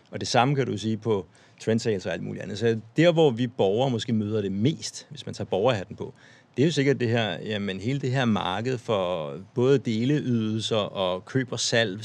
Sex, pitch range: male, 105-130 Hz